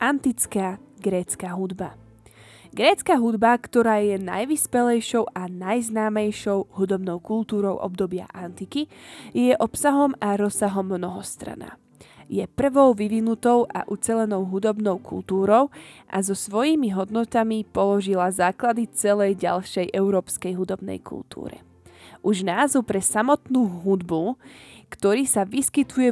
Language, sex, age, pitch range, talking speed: Slovak, female, 20-39, 185-240 Hz, 105 wpm